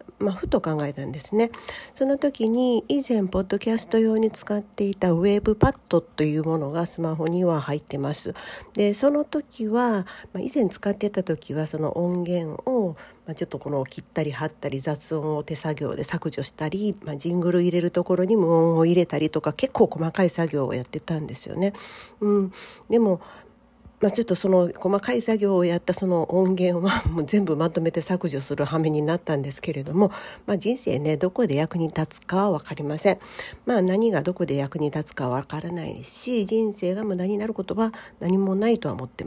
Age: 40-59